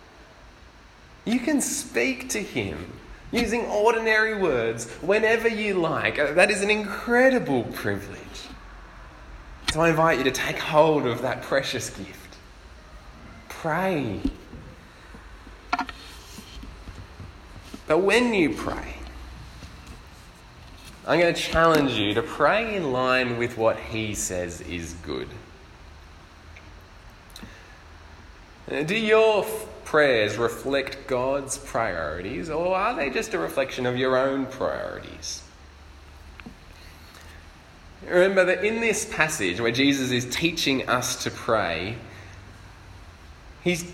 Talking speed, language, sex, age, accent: 105 wpm, English, male, 20-39, Australian